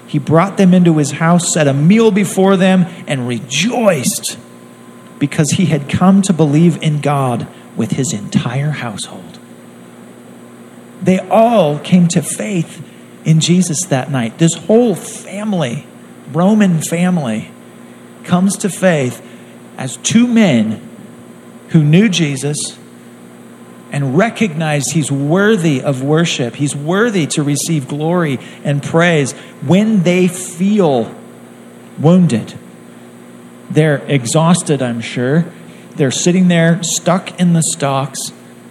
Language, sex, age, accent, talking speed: English, male, 40-59, American, 120 wpm